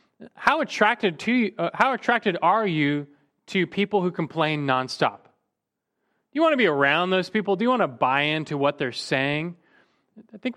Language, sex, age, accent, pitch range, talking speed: English, male, 30-49, American, 130-185 Hz, 180 wpm